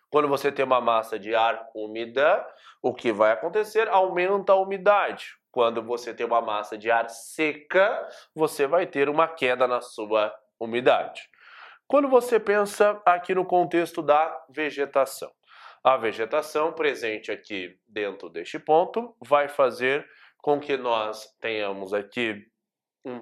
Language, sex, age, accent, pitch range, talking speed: Portuguese, male, 20-39, Brazilian, 120-190 Hz, 140 wpm